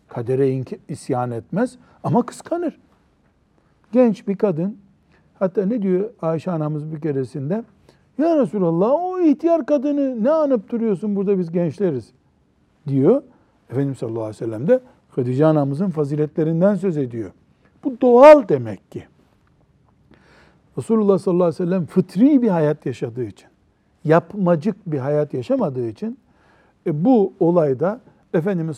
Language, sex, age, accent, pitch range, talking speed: Turkish, male, 60-79, native, 145-205 Hz, 130 wpm